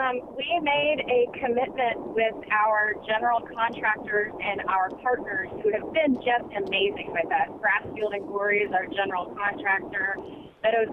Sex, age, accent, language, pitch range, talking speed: female, 30-49, American, English, 215-315 Hz, 150 wpm